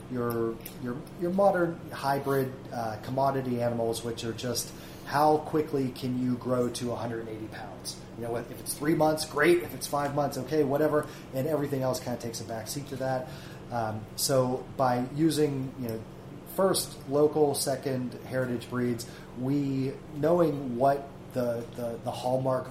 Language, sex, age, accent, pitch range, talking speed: English, male, 30-49, American, 115-130 Hz, 160 wpm